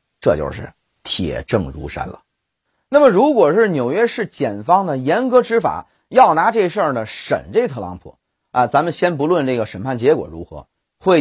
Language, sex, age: Chinese, male, 30-49